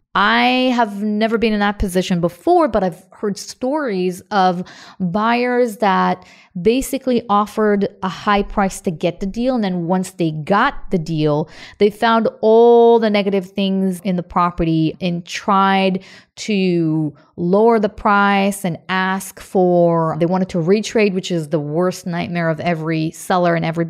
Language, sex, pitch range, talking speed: English, female, 175-210 Hz, 160 wpm